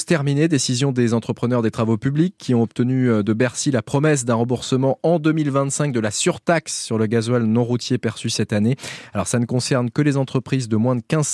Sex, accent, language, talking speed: male, French, French, 210 wpm